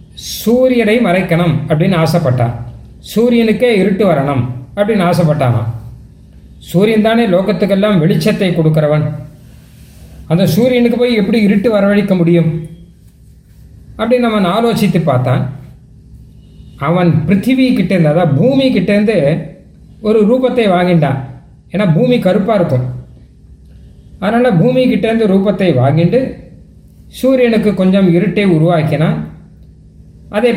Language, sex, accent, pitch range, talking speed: Tamil, male, native, 155-215 Hz, 90 wpm